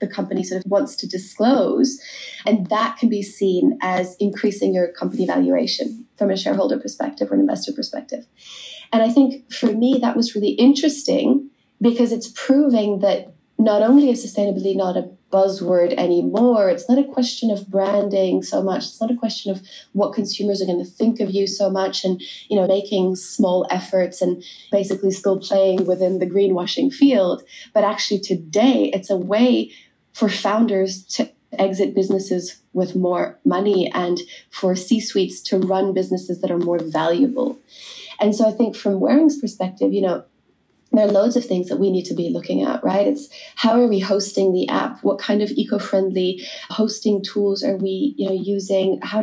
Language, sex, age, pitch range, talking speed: English, female, 20-39, 190-245 Hz, 180 wpm